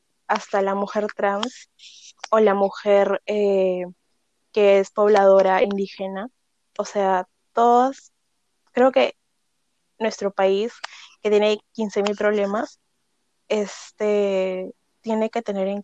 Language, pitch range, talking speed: Spanish, 195-215 Hz, 105 wpm